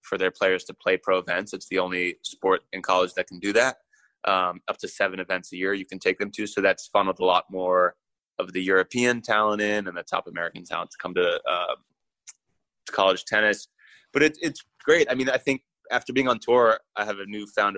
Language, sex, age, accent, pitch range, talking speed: English, male, 20-39, American, 90-110 Hz, 230 wpm